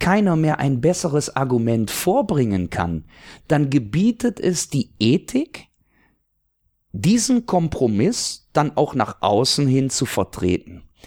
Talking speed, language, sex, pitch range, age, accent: 115 wpm, German, male, 110-170 Hz, 50-69, German